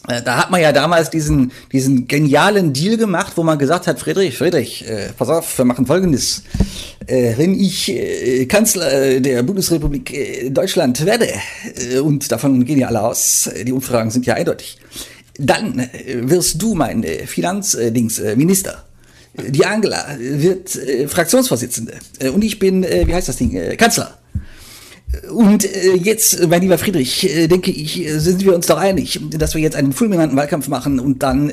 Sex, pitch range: male, 125-180 Hz